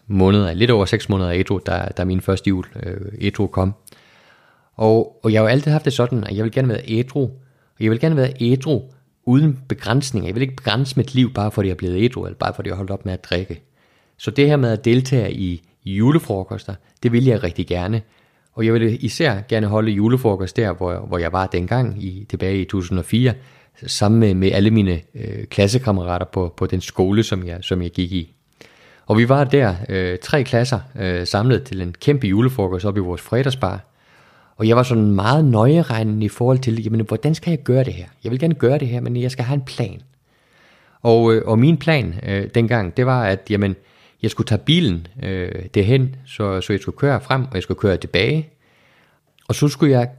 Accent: Danish